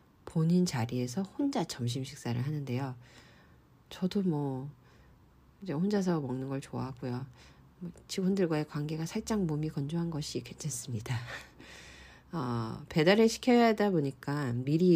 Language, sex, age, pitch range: Korean, female, 40-59, 125-175 Hz